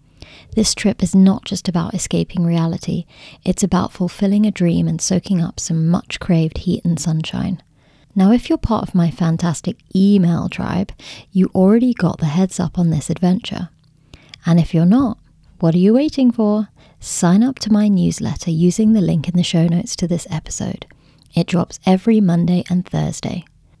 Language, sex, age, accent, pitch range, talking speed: English, female, 30-49, British, 170-200 Hz, 175 wpm